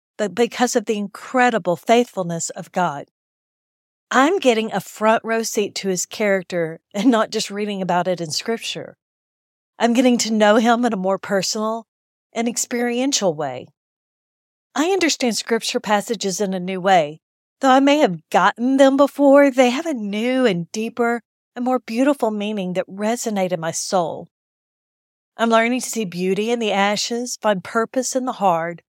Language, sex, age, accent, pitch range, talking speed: English, female, 50-69, American, 190-235 Hz, 165 wpm